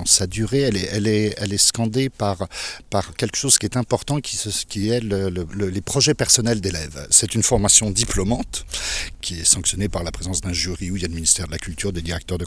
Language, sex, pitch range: French, male, 95-120 Hz